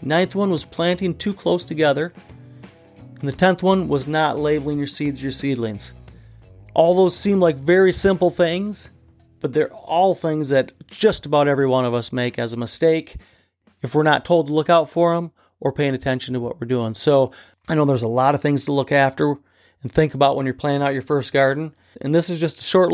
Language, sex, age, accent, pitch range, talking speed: English, male, 40-59, American, 130-155 Hz, 215 wpm